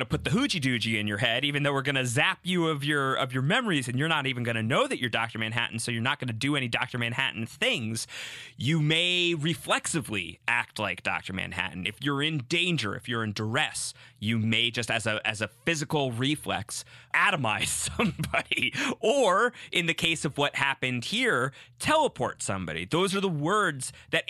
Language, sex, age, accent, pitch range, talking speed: English, male, 30-49, American, 110-140 Hz, 195 wpm